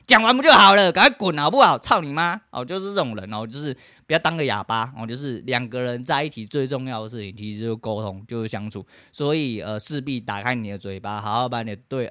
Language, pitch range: Chinese, 110-145 Hz